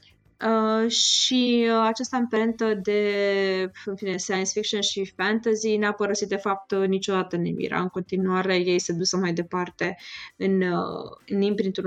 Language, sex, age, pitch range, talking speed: Romanian, female, 20-39, 185-210 Hz, 145 wpm